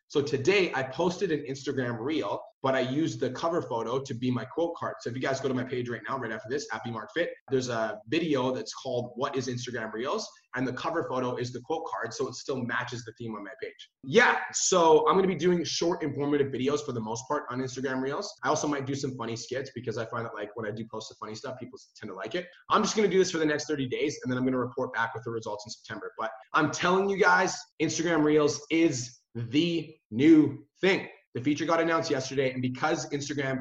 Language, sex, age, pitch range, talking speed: English, male, 20-39, 125-160 Hz, 255 wpm